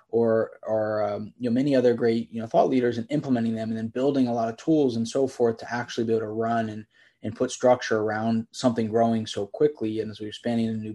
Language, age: English, 20-39